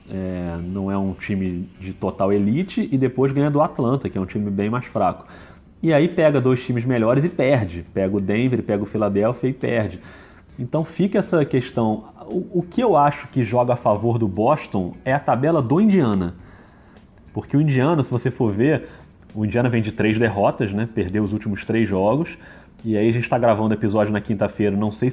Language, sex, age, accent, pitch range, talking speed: Portuguese, male, 30-49, Brazilian, 105-140 Hz, 205 wpm